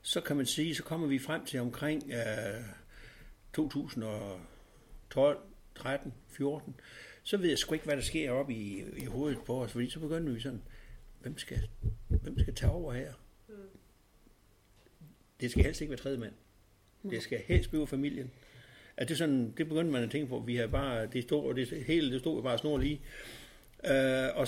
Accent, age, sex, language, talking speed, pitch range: native, 60-79, male, Danish, 185 wpm, 115-145 Hz